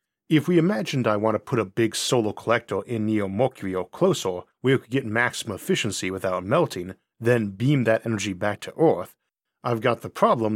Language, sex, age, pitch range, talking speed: English, male, 40-59, 100-130 Hz, 200 wpm